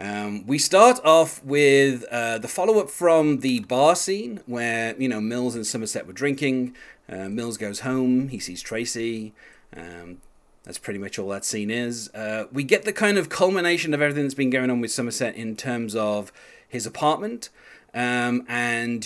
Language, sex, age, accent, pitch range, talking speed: English, male, 30-49, British, 110-145 Hz, 180 wpm